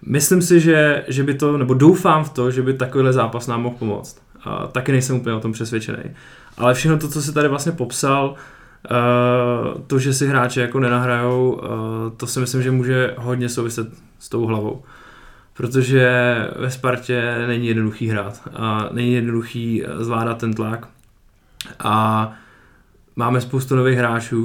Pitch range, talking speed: 115-125 Hz, 155 wpm